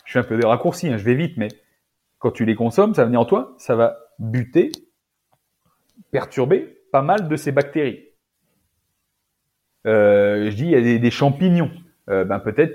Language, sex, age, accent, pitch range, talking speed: French, male, 30-49, French, 115-165 Hz, 195 wpm